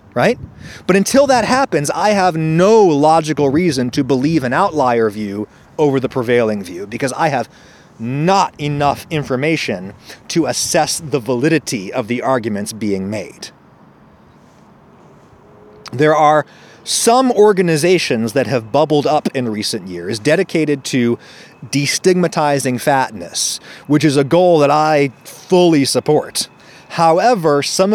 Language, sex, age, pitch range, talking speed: English, male, 30-49, 130-180 Hz, 125 wpm